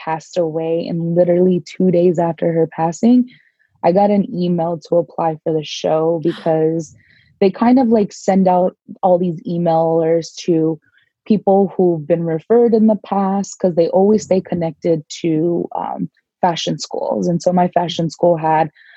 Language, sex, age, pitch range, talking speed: English, female, 20-39, 160-185 Hz, 160 wpm